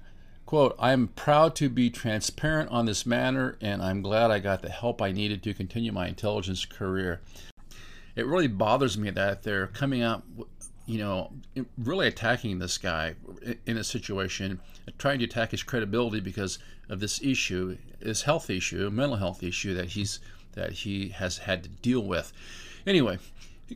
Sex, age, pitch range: male, 50-69, 95-125 Hz